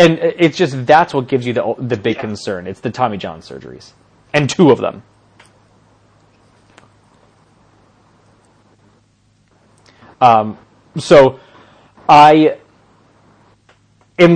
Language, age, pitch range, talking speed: English, 30-49, 110-145 Hz, 100 wpm